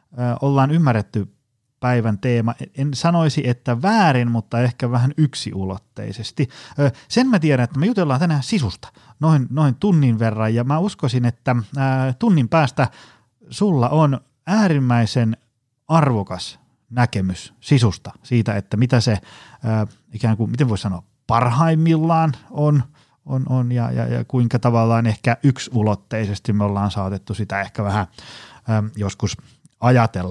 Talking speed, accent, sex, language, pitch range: 125 wpm, native, male, Finnish, 110-140 Hz